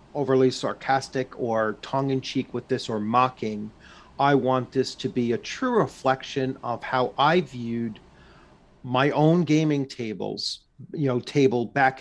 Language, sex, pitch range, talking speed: English, male, 130-165 Hz, 150 wpm